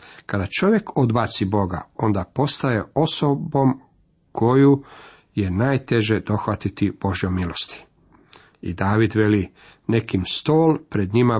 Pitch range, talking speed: 105-135 Hz, 105 wpm